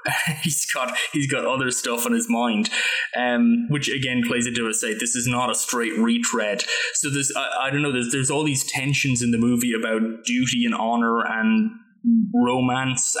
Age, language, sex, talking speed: 20-39, English, male, 190 wpm